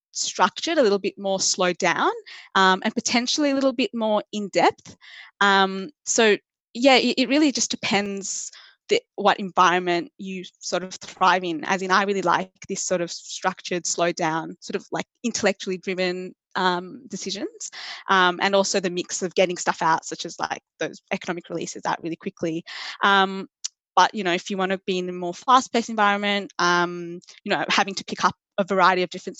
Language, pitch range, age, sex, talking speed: English, 175-210 Hz, 20-39, female, 185 wpm